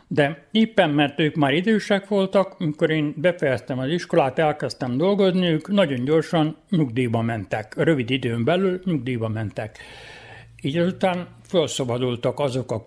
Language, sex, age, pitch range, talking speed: Hungarian, male, 60-79, 125-160 Hz, 135 wpm